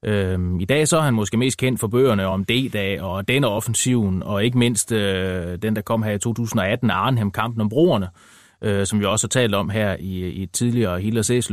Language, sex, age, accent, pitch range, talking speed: Danish, male, 30-49, native, 100-135 Hz, 220 wpm